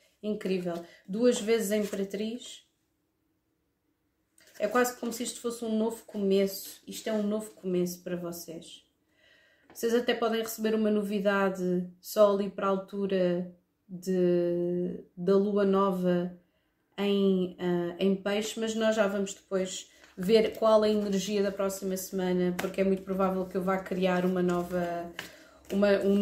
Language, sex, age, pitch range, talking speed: Portuguese, female, 30-49, 185-215 Hz, 150 wpm